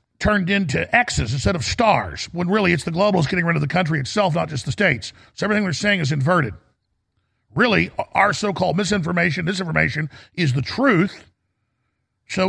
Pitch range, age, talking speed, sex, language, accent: 110-180 Hz, 50-69, 175 wpm, male, English, American